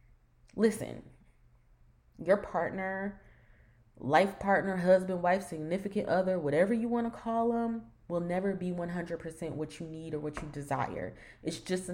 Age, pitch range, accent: 20-39, 150-185 Hz, American